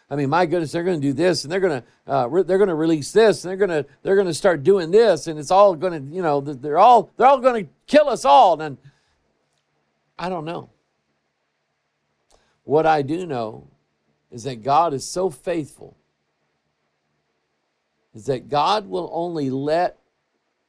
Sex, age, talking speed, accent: male, 50-69, 195 wpm, American